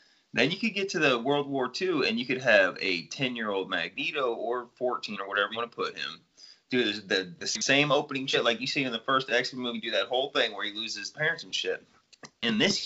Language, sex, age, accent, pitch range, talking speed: English, male, 30-49, American, 115-160 Hz, 245 wpm